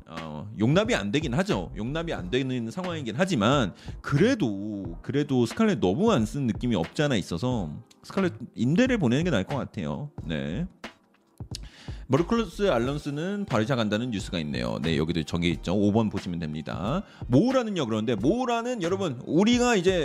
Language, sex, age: Korean, male, 30-49